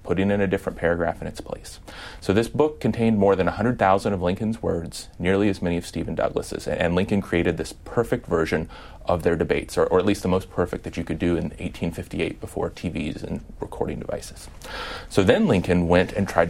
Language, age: English, 30-49